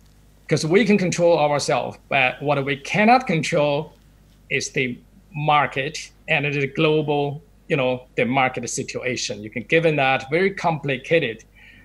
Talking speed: 135 wpm